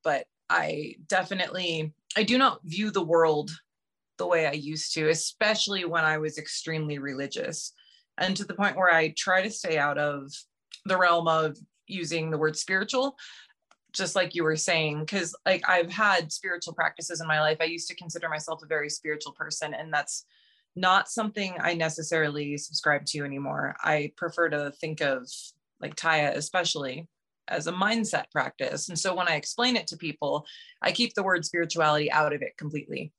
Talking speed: 180 wpm